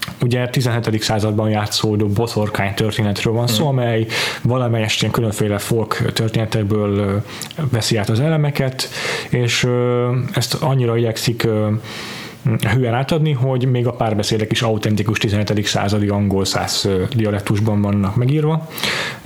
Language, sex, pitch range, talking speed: Hungarian, male, 110-135 Hz, 115 wpm